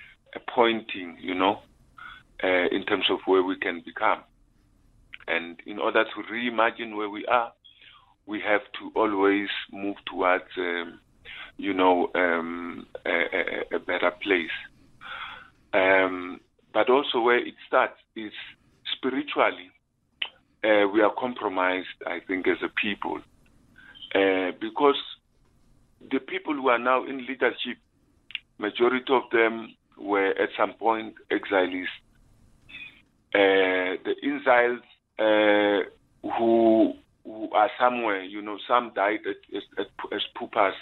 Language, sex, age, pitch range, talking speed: English, male, 50-69, 95-125 Hz, 120 wpm